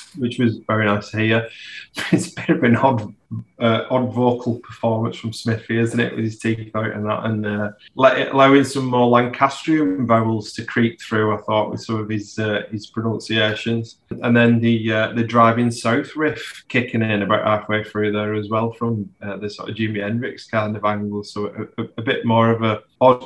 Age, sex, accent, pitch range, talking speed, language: 20-39, male, British, 105-125 Hz, 210 wpm, English